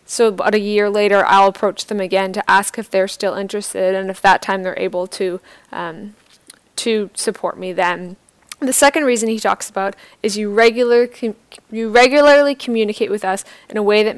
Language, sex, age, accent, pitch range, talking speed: English, female, 10-29, American, 190-225 Hz, 190 wpm